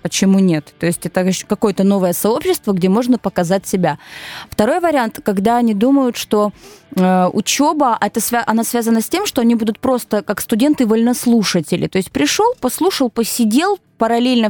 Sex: female